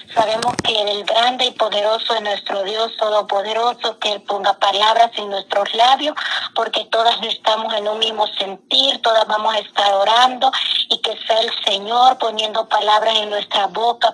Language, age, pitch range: Spanish, 30-49, 215-245 Hz